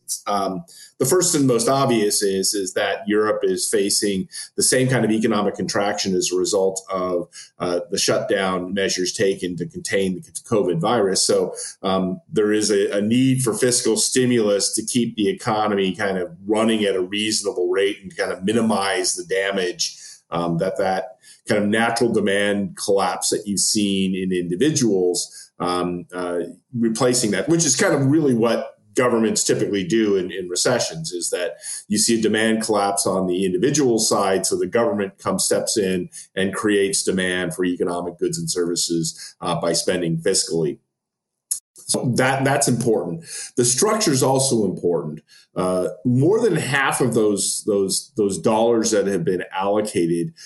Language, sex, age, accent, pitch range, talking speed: English, male, 40-59, American, 95-125 Hz, 165 wpm